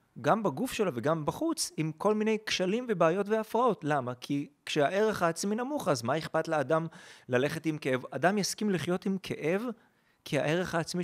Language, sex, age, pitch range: Hebrew, male, 30-49, 130-195 Hz